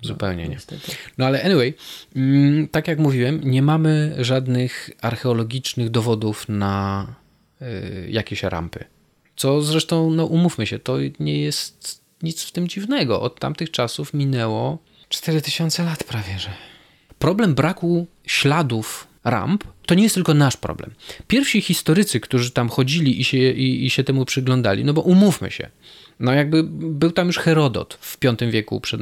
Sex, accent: male, native